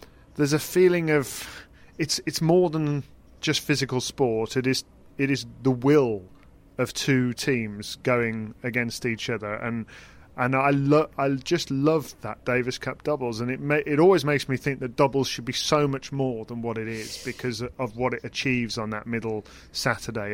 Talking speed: 185 wpm